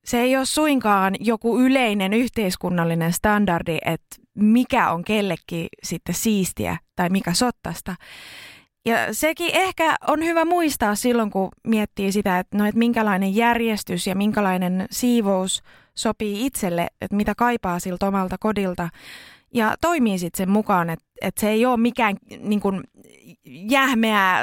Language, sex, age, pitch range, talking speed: Finnish, female, 20-39, 190-245 Hz, 140 wpm